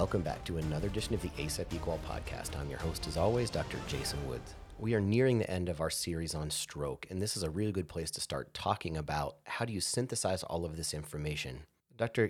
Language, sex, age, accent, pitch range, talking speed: English, male, 30-49, American, 80-100 Hz, 235 wpm